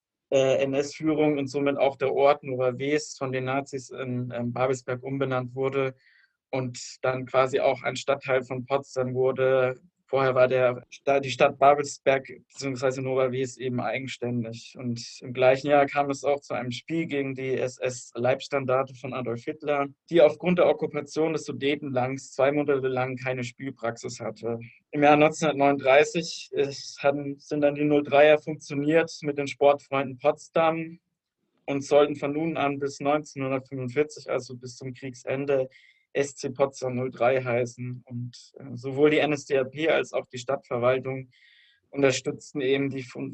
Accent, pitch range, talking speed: German, 130-145 Hz, 145 wpm